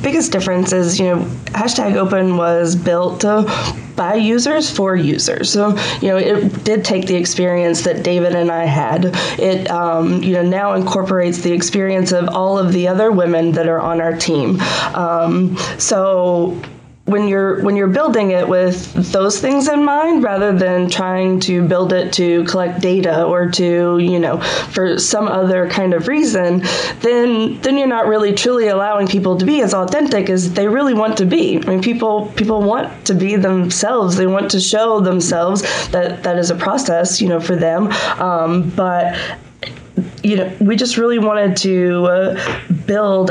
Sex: female